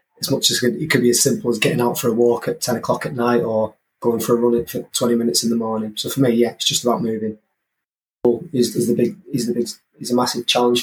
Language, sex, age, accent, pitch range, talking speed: English, male, 20-39, British, 120-135 Hz, 270 wpm